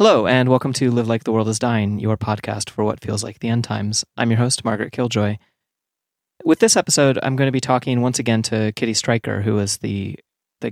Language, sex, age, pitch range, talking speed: English, male, 30-49, 105-125 Hz, 230 wpm